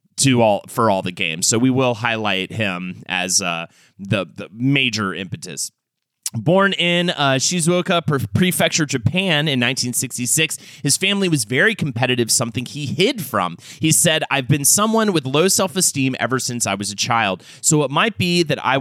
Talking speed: 170 wpm